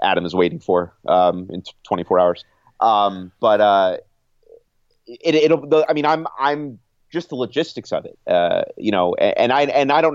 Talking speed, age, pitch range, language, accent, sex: 175 wpm, 30-49, 90-110 Hz, English, American, male